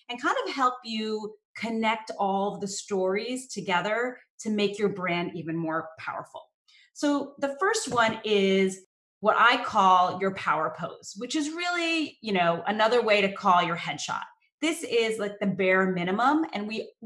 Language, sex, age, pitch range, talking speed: English, female, 30-49, 195-255 Hz, 170 wpm